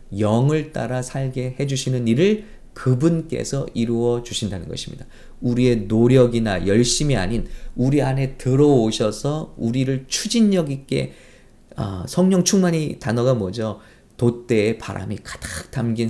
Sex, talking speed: male, 105 wpm